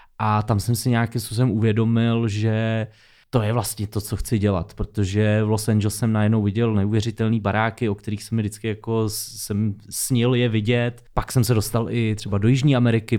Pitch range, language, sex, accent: 110-125 Hz, Czech, male, native